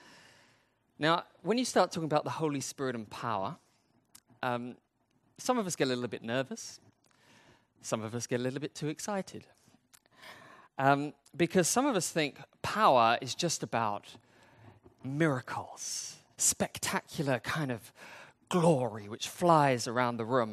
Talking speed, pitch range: 145 wpm, 125-195 Hz